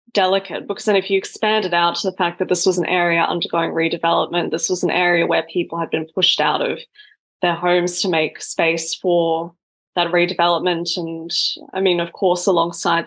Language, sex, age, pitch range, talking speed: English, female, 10-29, 175-215 Hz, 195 wpm